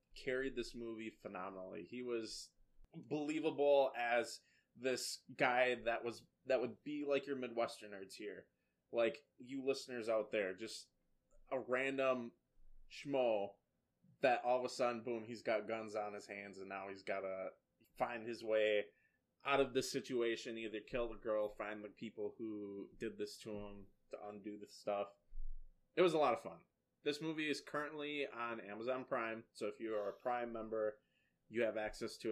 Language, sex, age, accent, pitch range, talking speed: English, male, 20-39, American, 105-130 Hz, 170 wpm